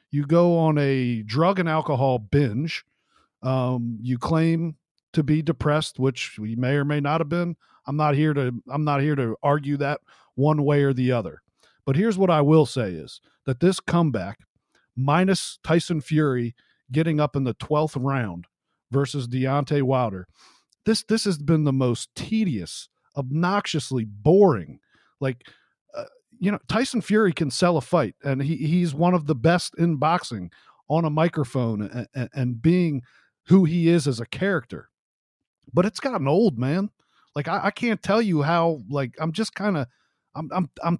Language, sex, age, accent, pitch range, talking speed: English, male, 50-69, American, 135-175 Hz, 175 wpm